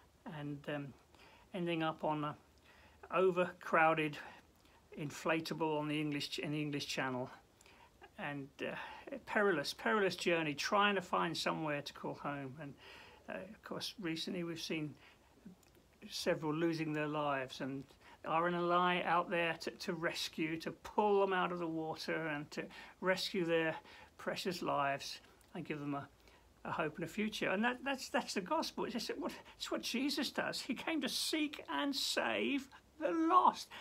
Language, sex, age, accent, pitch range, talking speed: English, male, 50-69, British, 150-230 Hz, 165 wpm